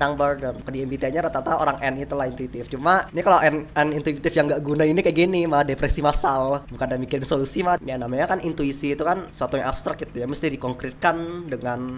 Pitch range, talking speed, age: 125-150 Hz, 210 wpm, 20-39